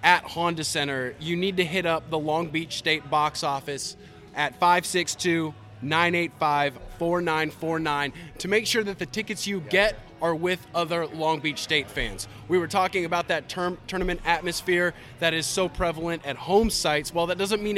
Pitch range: 150-175 Hz